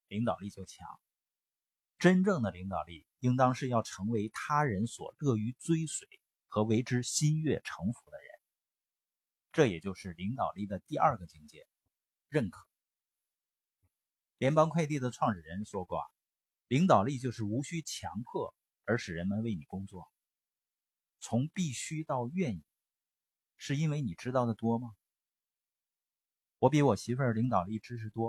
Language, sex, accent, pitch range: Chinese, male, native, 105-145 Hz